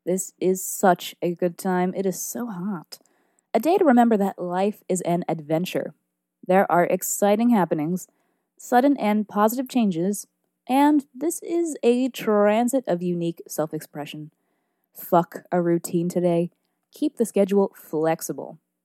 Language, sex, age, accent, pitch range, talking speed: English, female, 20-39, American, 170-235 Hz, 135 wpm